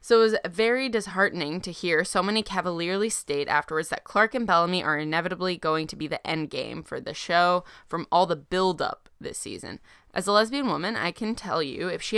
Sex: female